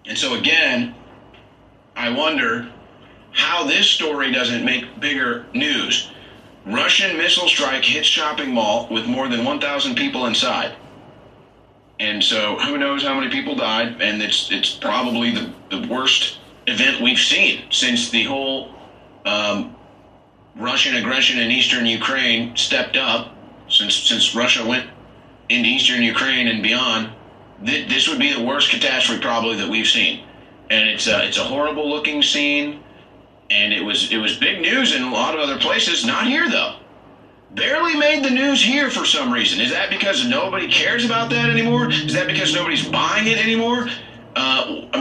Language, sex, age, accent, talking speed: English, male, 30-49, American, 160 wpm